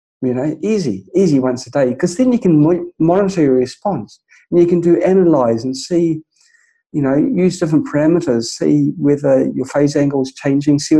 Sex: male